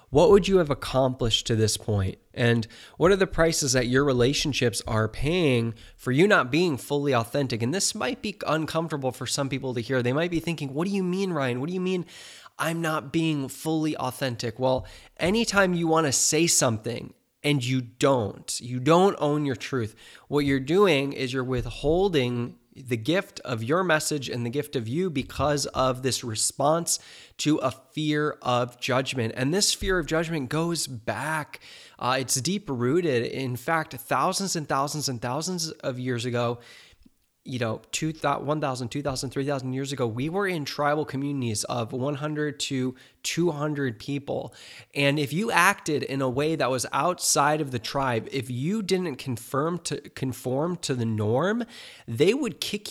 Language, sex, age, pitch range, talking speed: English, male, 20-39, 125-160 Hz, 175 wpm